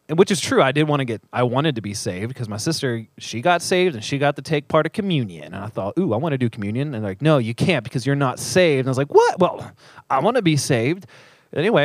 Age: 30-49